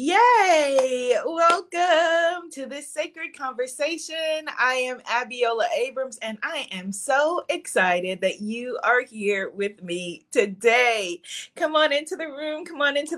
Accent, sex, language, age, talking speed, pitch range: American, female, English, 30-49, 135 wpm, 235-315 Hz